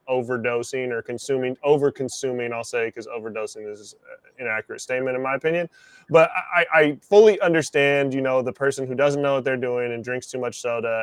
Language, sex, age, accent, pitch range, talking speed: English, male, 20-39, American, 125-150 Hz, 195 wpm